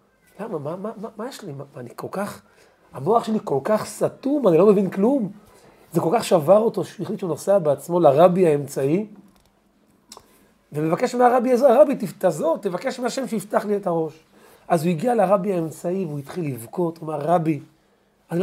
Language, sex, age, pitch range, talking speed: Hebrew, male, 40-59, 150-220 Hz, 165 wpm